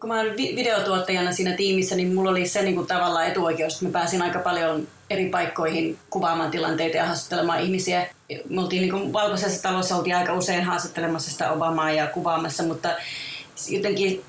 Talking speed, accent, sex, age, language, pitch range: 170 wpm, native, female, 30-49, Finnish, 160-180 Hz